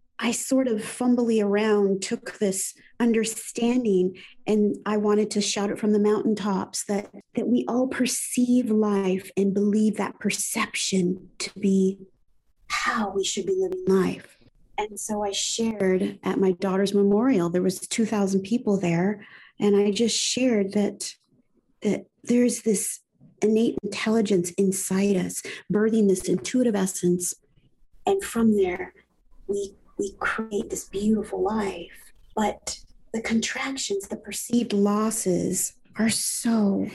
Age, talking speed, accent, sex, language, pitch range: 40-59, 130 wpm, American, female, English, 195-235 Hz